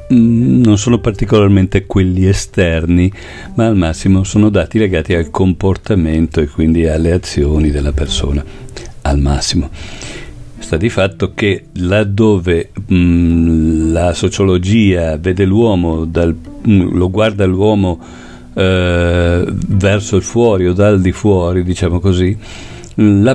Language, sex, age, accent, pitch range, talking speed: Italian, male, 50-69, native, 80-100 Hz, 115 wpm